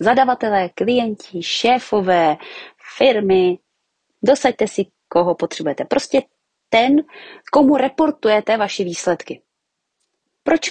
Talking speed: 85 wpm